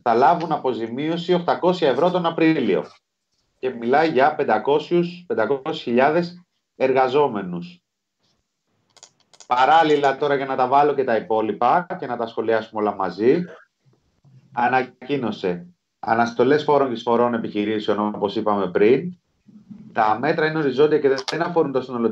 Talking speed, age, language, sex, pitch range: 120 wpm, 30-49, Greek, male, 115-155 Hz